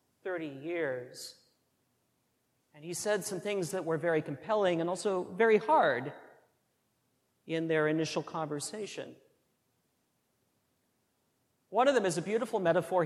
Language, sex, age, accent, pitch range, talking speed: English, male, 40-59, American, 150-185 Hz, 120 wpm